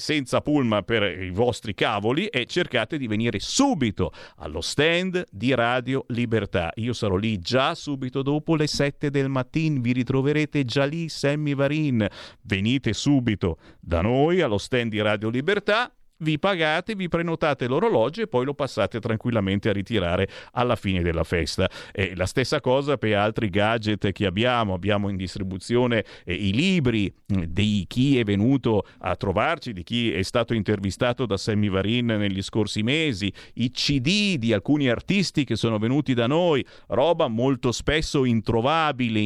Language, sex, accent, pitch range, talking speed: Italian, male, native, 105-140 Hz, 155 wpm